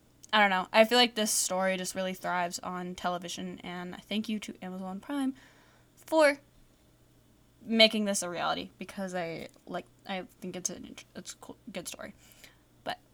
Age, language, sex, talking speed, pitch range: 10-29, English, female, 175 wpm, 190-230 Hz